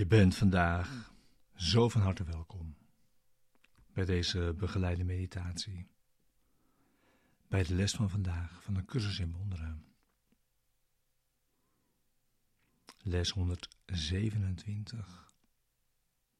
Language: Dutch